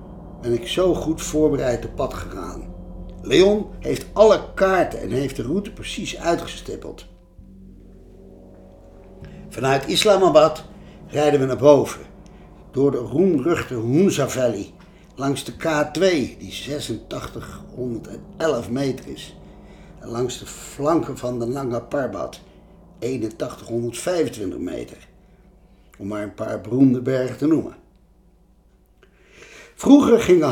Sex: male